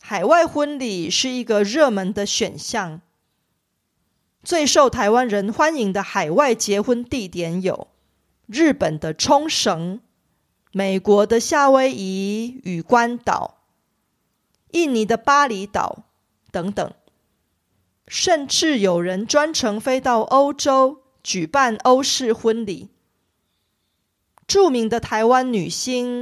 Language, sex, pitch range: Korean, female, 195-265 Hz